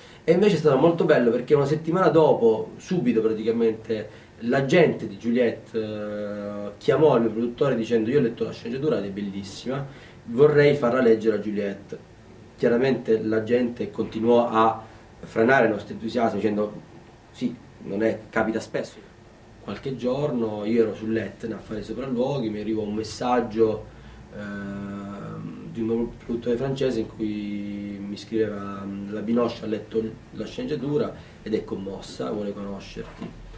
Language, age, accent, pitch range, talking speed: Italian, 30-49, native, 105-120 Hz, 150 wpm